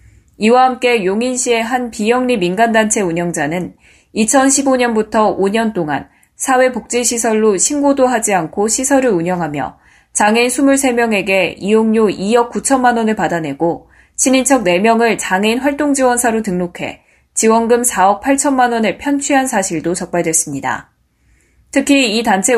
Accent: native